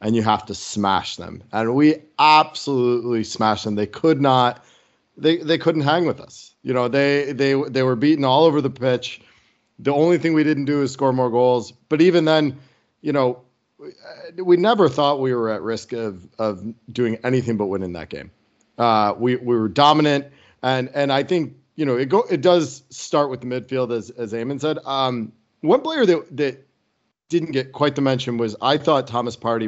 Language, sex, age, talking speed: English, male, 40-59, 200 wpm